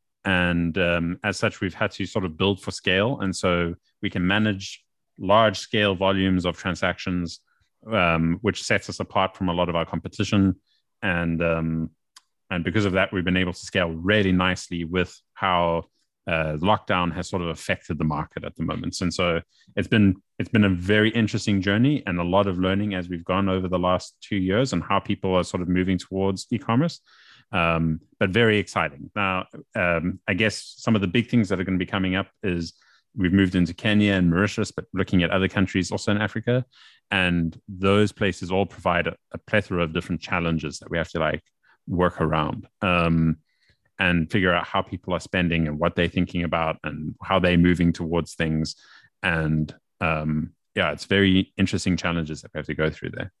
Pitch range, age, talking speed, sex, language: 85-100 Hz, 30-49, 200 wpm, male, English